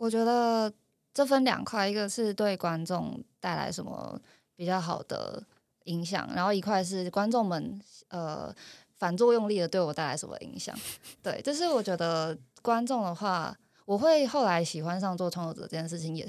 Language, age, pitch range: Chinese, 20-39, 175-230 Hz